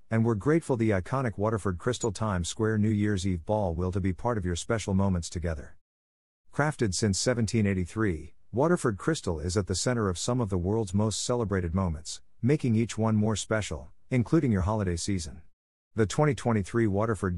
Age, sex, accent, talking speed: 50-69, male, American, 175 wpm